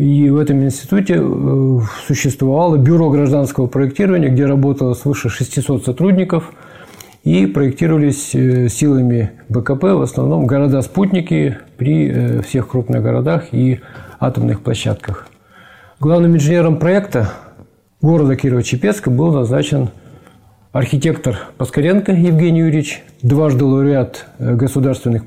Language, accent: Russian, native